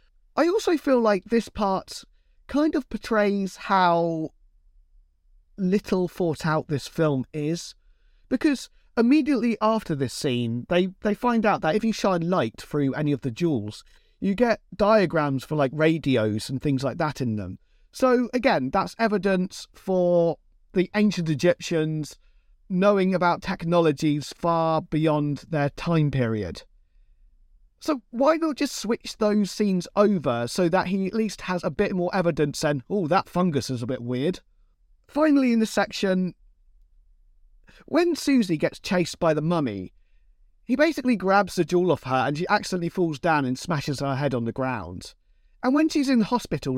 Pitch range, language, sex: 140-220 Hz, English, male